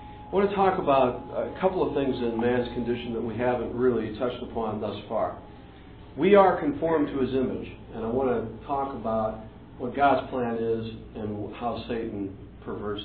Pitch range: 110-135 Hz